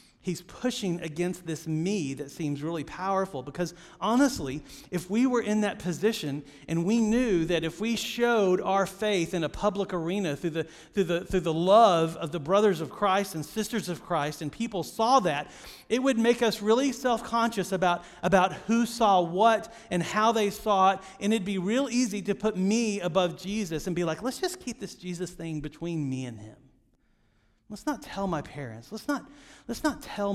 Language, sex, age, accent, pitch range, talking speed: English, male, 40-59, American, 165-210 Hz, 195 wpm